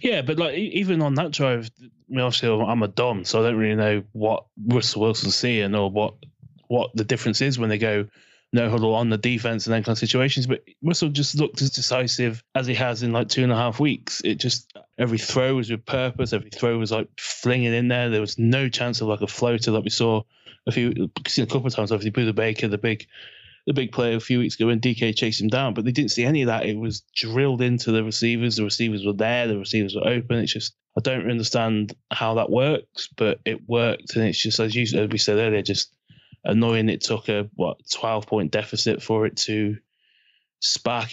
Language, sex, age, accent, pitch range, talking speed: English, male, 20-39, British, 110-125 Hz, 230 wpm